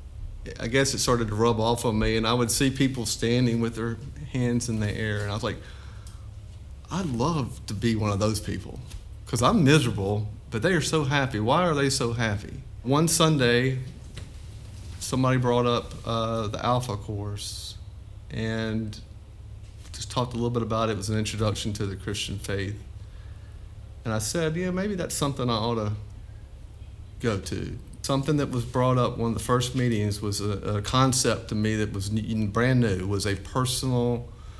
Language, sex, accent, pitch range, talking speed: English, male, American, 100-120 Hz, 185 wpm